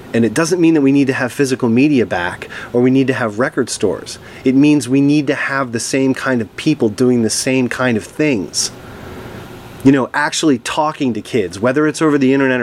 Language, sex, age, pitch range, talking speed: English, male, 30-49, 115-140 Hz, 225 wpm